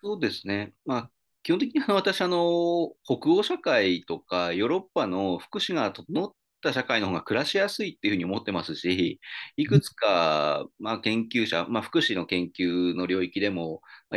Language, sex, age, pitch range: Japanese, male, 30-49, 85-140 Hz